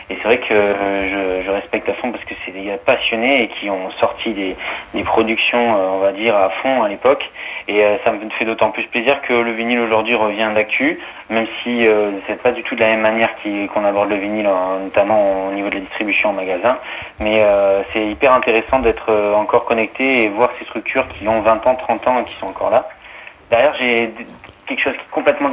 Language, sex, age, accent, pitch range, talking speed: French, male, 30-49, French, 100-120 Hz, 240 wpm